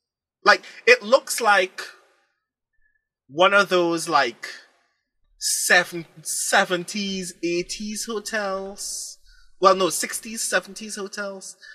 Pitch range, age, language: 140-200 Hz, 20-39, English